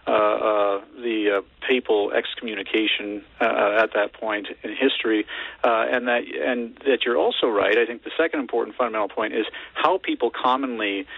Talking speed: 165 wpm